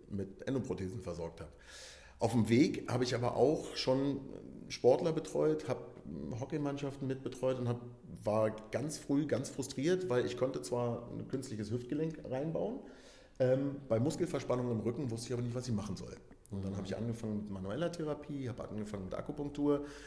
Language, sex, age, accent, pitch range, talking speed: German, male, 40-59, German, 105-130 Hz, 165 wpm